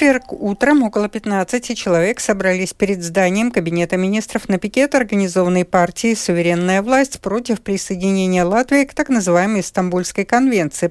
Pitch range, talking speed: 180-240 Hz, 130 wpm